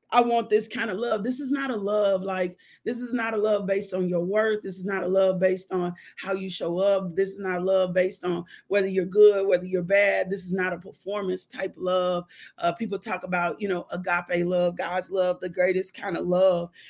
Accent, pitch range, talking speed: American, 185-235 Hz, 240 wpm